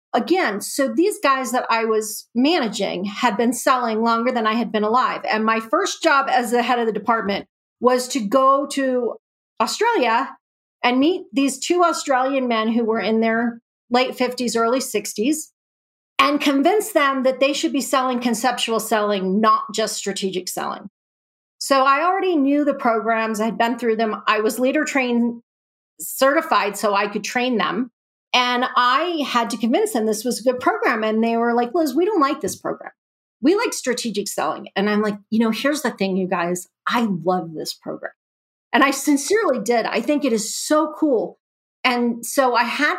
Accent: American